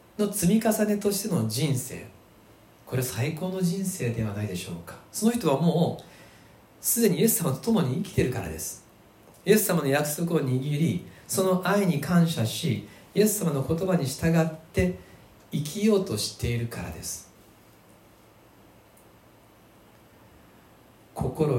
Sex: male